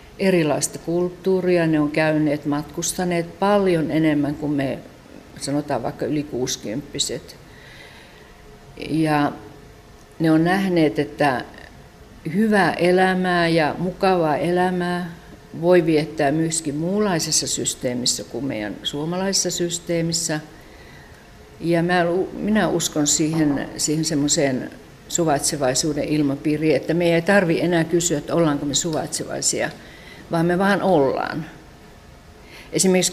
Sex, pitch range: female, 145-175 Hz